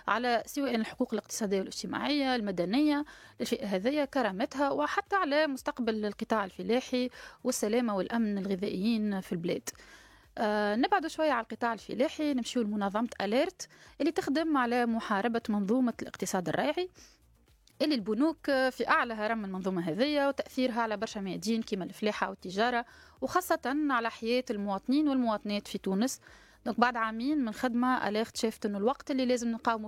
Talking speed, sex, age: 135 wpm, female, 20-39